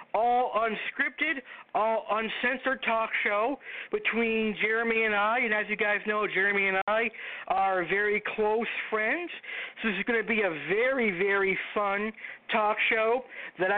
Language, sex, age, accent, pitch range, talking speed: English, male, 50-69, American, 210-250 Hz, 155 wpm